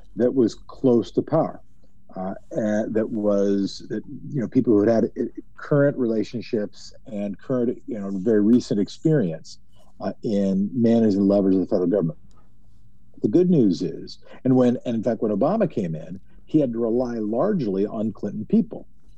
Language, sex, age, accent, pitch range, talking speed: English, male, 50-69, American, 95-120 Hz, 170 wpm